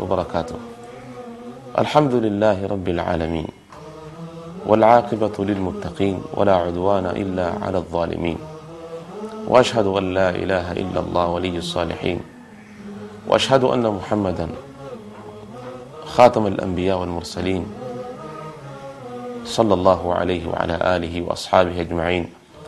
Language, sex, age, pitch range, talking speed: Swahili, male, 30-49, 95-155 Hz, 85 wpm